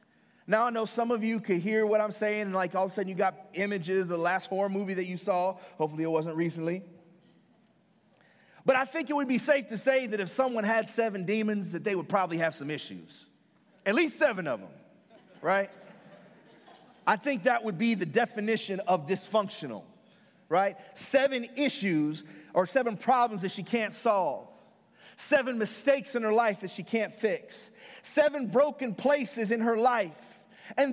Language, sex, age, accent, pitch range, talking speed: English, male, 30-49, American, 195-285 Hz, 185 wpm